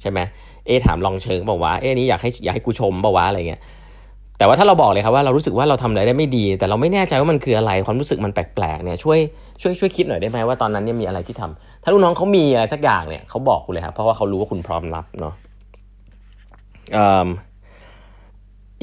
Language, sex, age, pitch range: Thai, male, 20-39, 95-135 Hz